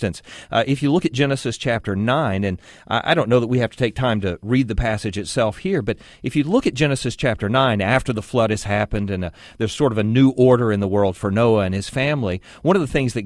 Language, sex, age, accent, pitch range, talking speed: English, male, 40-59, American, 100-135 Hz, 260 wpm